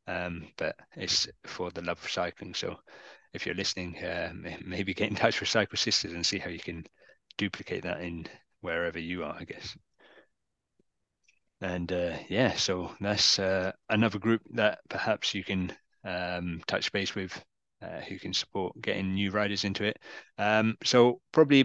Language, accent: English, British